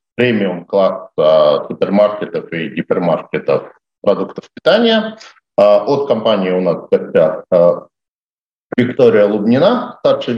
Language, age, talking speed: Russian, 50-69, 105 wpm